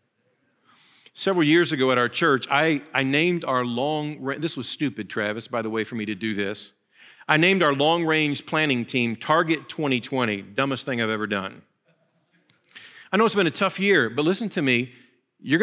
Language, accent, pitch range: English, American, 120-155 Hz